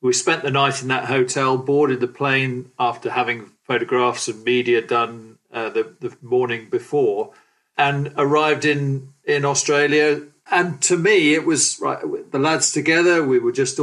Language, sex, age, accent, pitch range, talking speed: English, male, 40-59, British, 130-170 Hz, 160 wpm